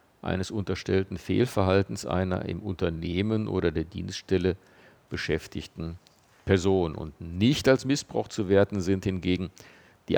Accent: German